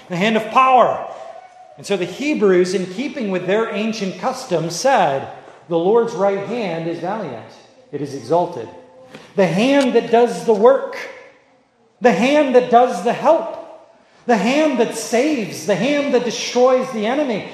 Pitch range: 170-240 Hz